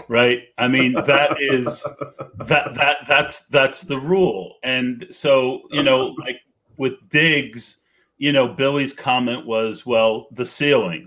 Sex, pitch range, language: male, 115-145 Hz, English